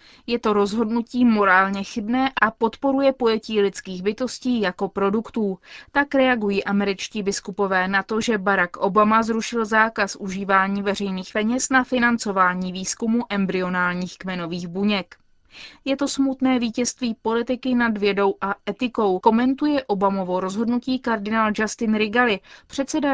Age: 20-39